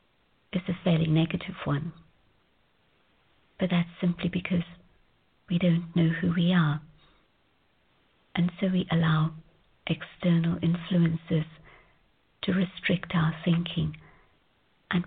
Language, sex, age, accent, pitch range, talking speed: English, female, 50-69, British, 160-180 Hz, 105 wpm